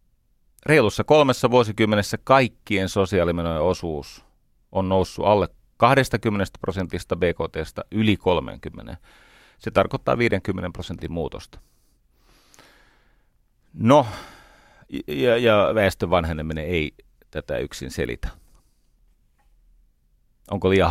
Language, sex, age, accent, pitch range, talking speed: Finnish, male, 40-59, native, 85-105 Hz, 85 wpm